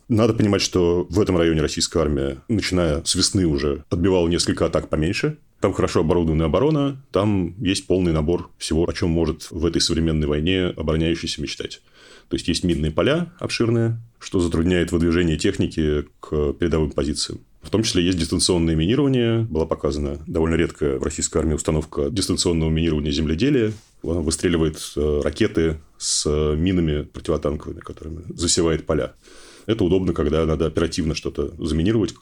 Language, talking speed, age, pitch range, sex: Russian, 150 wpm, 30-49, 80-95 Hz, male